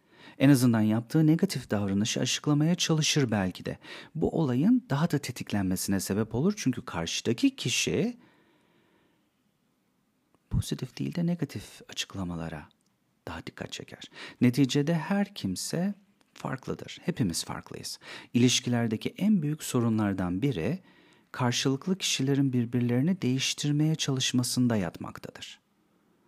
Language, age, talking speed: Turkish, 40-59, 100 wpm